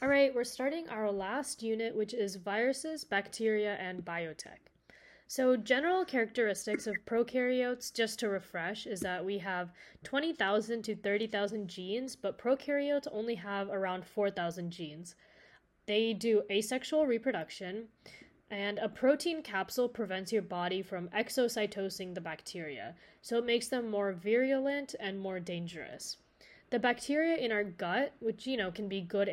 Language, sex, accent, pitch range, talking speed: English, female, American, 195-245 Hz, 145 wpm